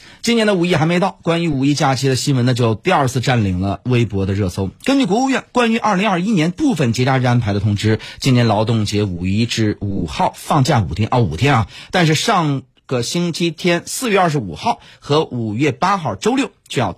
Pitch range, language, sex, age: 110-165 Hz, Chinese, male, 30-49